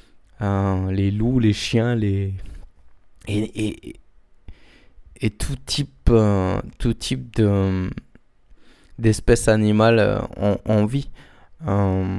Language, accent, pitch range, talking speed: French, French, 100-120 Hz, 110 wpm